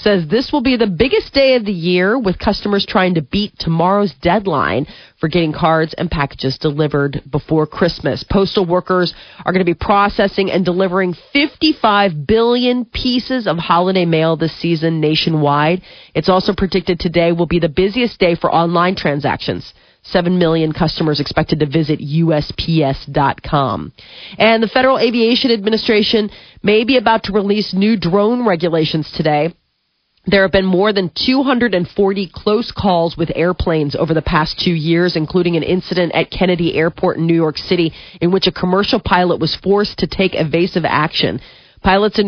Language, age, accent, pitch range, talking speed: English, 40-59, American, 160-200 Hz, 160 wpm